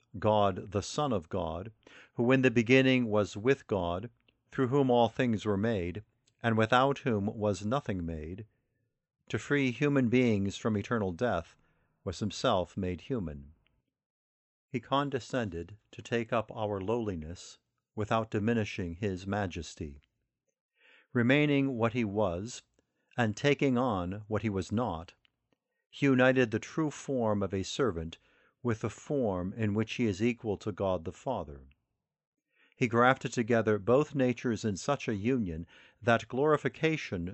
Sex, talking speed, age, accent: male, 140 wpm, 50-69, American